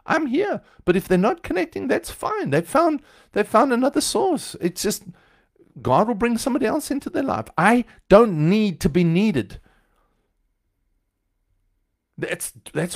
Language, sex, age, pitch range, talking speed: English, male, 50-69, 125-205 Hz, 155 wpm